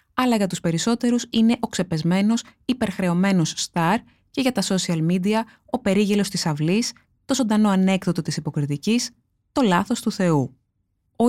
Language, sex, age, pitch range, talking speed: Greek, female, 20-39, 165-225 Hz, 150 wpm